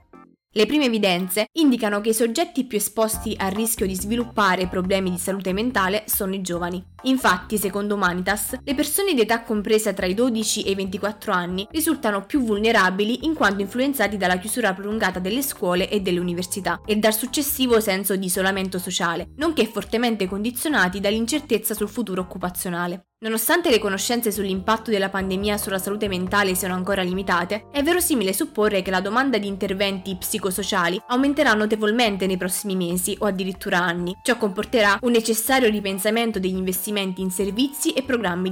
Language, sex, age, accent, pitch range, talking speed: Italian, female, 20-39, native, 190-235 Hz, 160 wpm